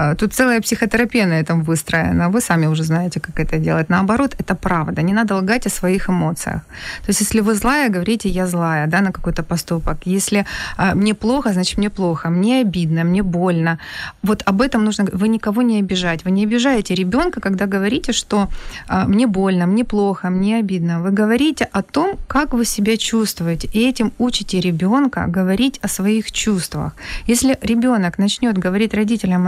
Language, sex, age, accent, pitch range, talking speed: Ukrainian, female, 20-39, native, 180-220 Hz, 175 wpm